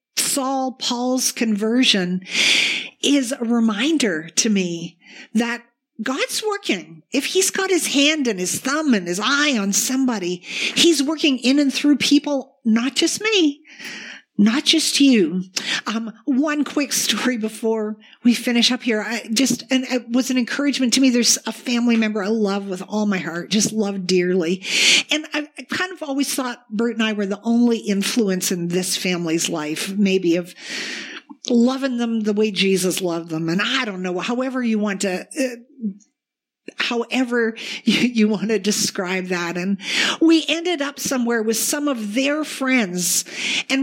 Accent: American